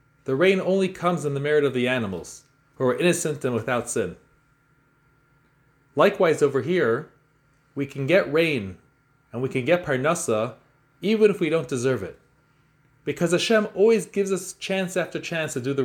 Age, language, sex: 30-49, English, male